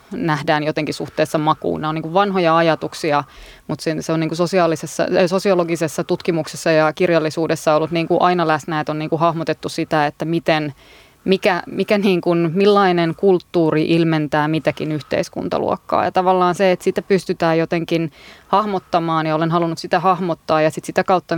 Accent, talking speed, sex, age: native, 155 wpm, female, 20-39